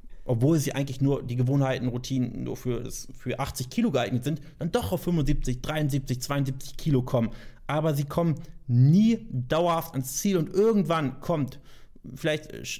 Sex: male